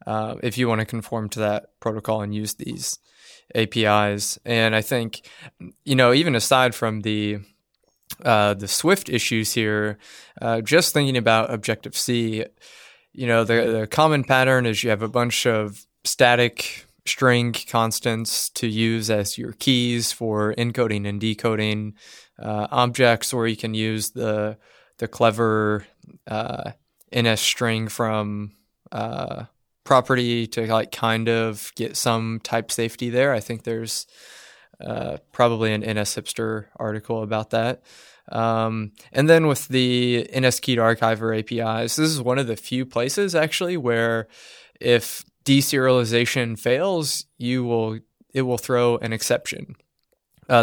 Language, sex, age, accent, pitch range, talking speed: English, male, 20-39, American, 110-125 Hz, 145 wpm